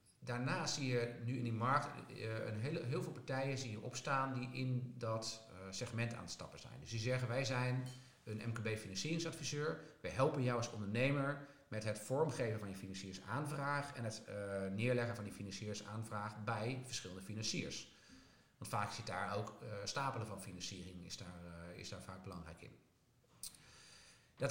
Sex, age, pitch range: male, 50-69, 110-130 Hz